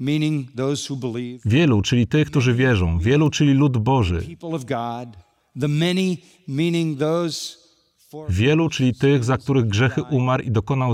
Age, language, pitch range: 40-59, Polish, 115-150 Hz